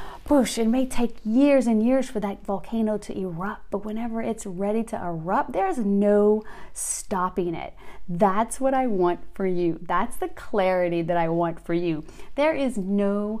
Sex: female